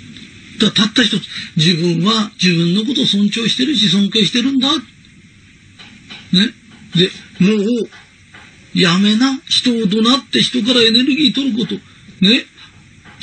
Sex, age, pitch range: male, 40-59, 200-275 Hz